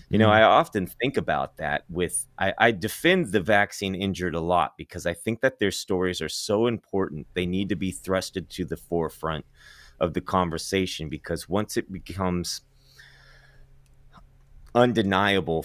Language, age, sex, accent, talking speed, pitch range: English, 30-49, male, American, 155 wpm, 80-100 Hz